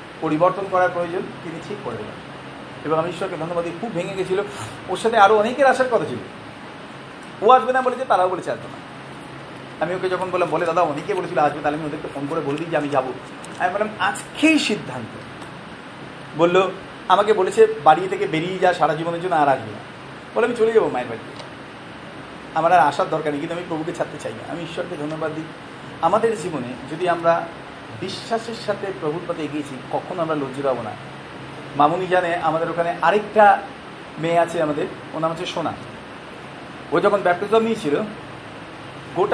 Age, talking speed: 40-59, 110 wpm